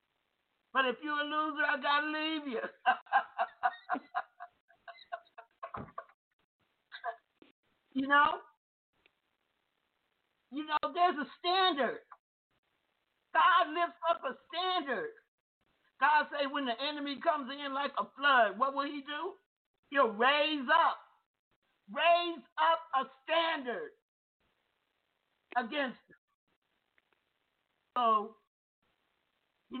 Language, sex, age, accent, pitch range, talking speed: English, male, 50-69, American, 255-345 Hz, 95 wpm